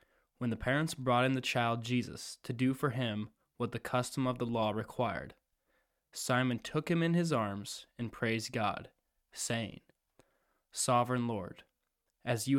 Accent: American